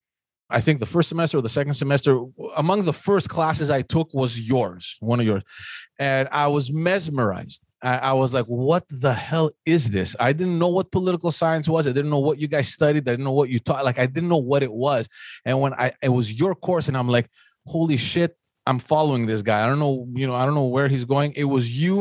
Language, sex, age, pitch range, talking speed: English, male, 30-49, 130-170 Hz, 245 wpm